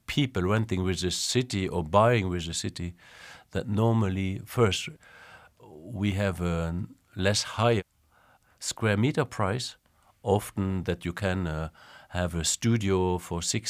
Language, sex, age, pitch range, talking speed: English, male, 50-69, 90-105 Hz, 135 wpm